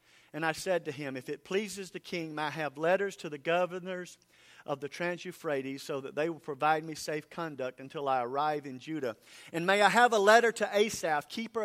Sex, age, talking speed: male, 50-69, 215 wpm